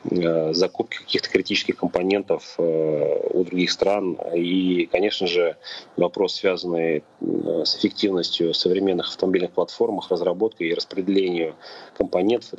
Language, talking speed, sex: Russian, 100 wpm, male